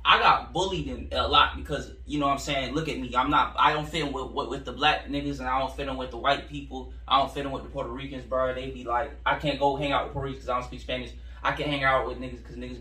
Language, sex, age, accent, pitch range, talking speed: English, male, 10-29, American, 120-145 Hz, 325 wpm